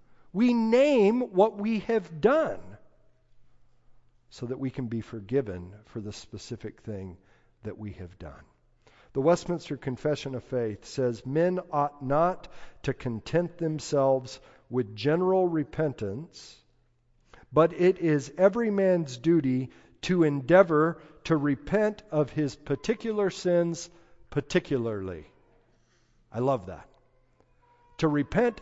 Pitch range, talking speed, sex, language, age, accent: 120-175 Hz, 115 wpm, male, English, 50-69, American